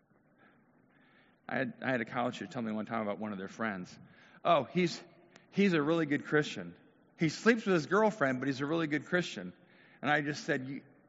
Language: English